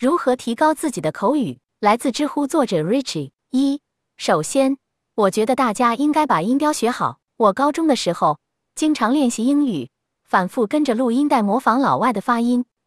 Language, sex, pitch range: Chinese, female, 225-285 Hz